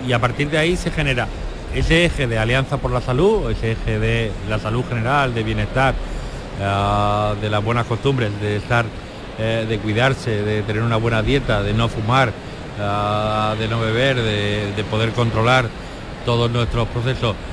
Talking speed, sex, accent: 160 wpm, male, Spanish